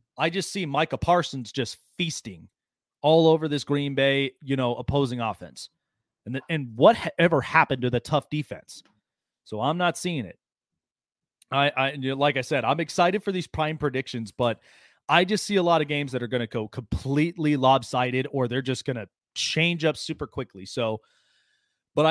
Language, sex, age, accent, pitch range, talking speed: English, male, 30-49, American, 125-155 Hz, 180 wpm